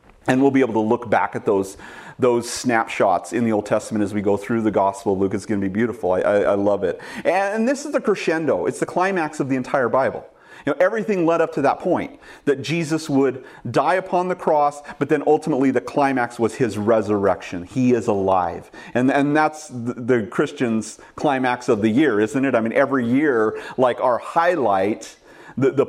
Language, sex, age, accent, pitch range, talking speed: English, male, 40-59, American, 110-135 Hz, 210 wpm